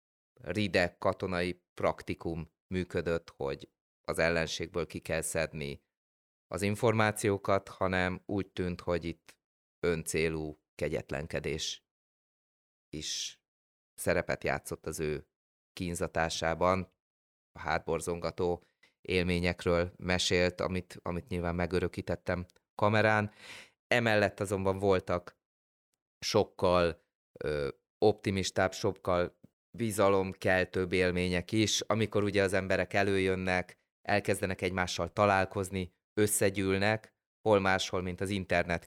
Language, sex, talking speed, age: Hungarian, male, 90 wpm, 30-49